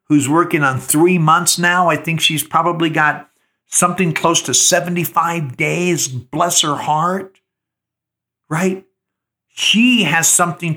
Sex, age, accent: male, 50-69, American